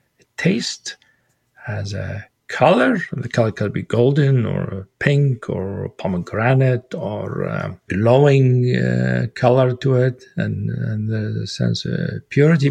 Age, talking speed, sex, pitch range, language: 50-69, 125 wpm, male, 100-135 Hz, English